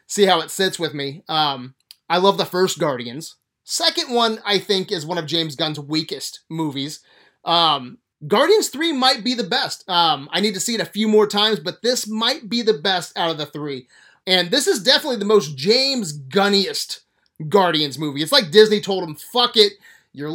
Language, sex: English, male